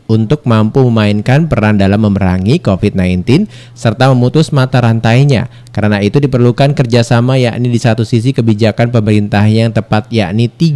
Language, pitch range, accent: Indonesian, 110-140 Hz, native